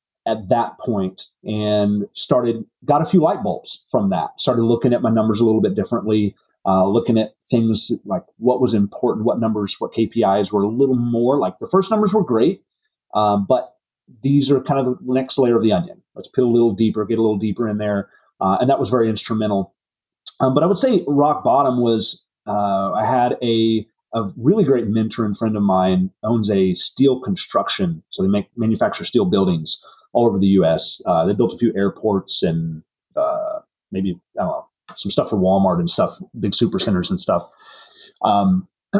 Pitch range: 105-135 Hz